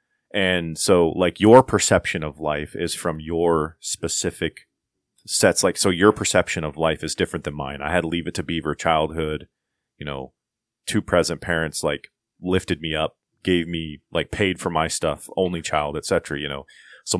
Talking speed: 180 wpm